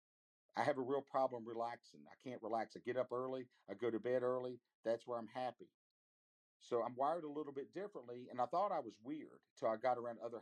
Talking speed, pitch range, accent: 230 wpm, 125-160 Hz, American